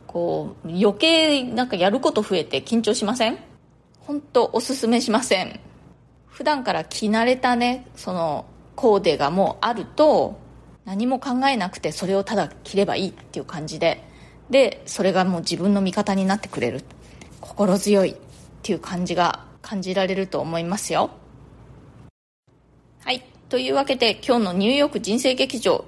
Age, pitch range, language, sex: 20-39, 195-255 Hz, Japanese, female